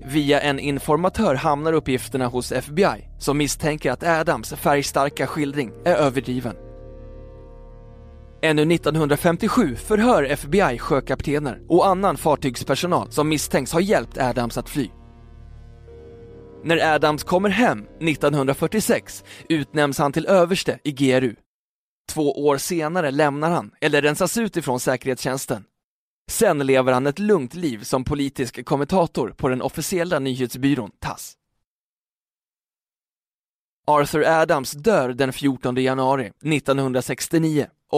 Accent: native